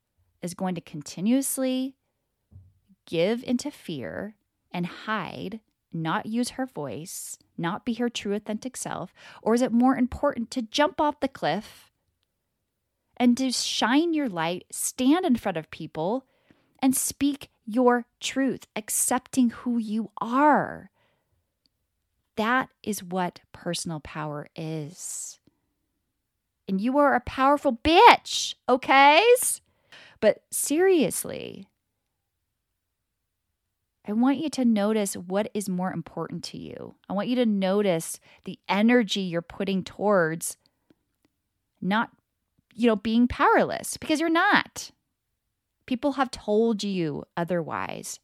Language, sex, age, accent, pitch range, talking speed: English, female, 30-49, American, 165-250 Hz, 120 wpm